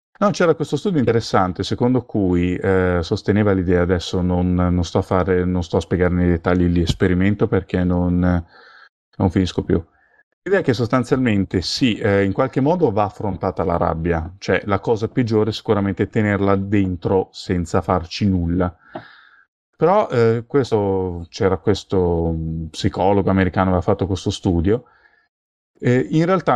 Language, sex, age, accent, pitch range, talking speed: Italian, male, 30-49, native, 95-115 Hz, 145 wpm